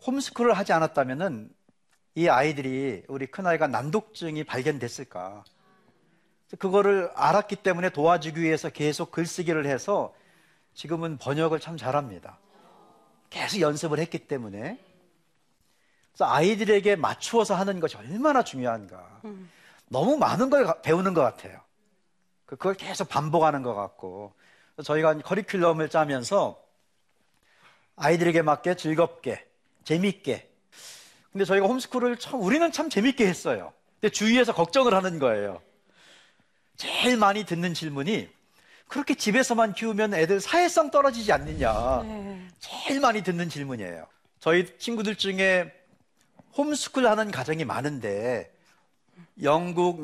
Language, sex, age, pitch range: Korean, male, 40-59, 155-215 Hz